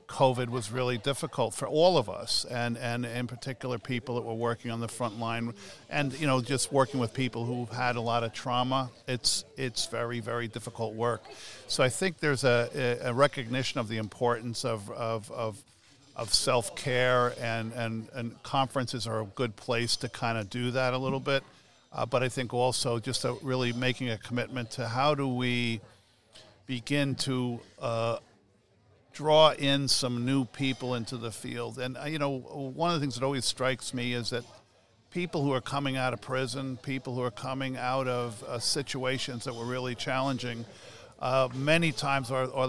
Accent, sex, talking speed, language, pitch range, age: American, male, 190 wpm, English, 120-135 Hz, 50-69